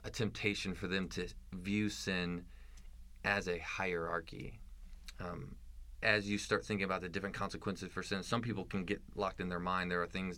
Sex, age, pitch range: male, 20-39, 80-105 Hz